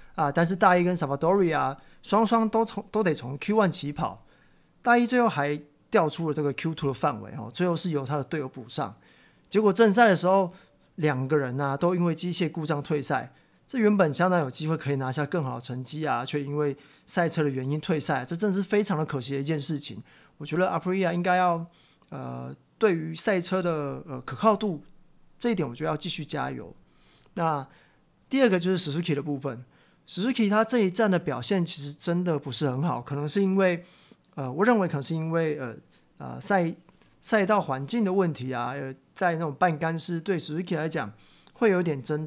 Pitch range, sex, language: 145-190 Hz, male, Chinese